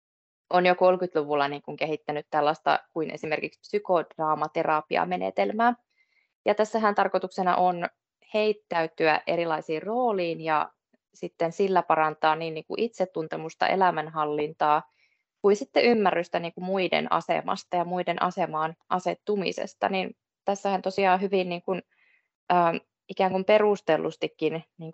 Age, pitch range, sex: 20-39, 155-185 Hz, female